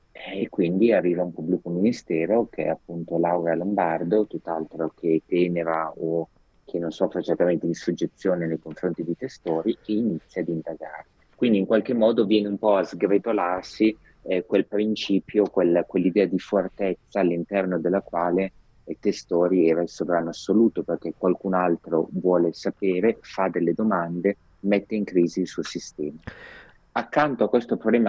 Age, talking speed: 30-49, 155 wpm